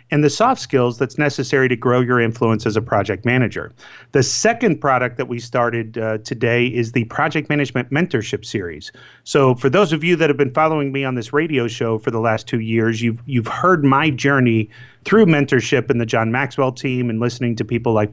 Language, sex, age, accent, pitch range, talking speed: English, male, 30-49, American, 120-155 Hz, 210 wpm